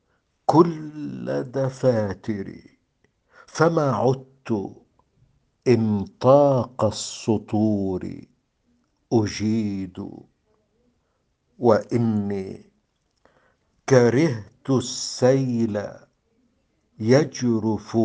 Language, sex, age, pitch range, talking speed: Arabic, male, 60-79, 105-130 Hz, 35 wpm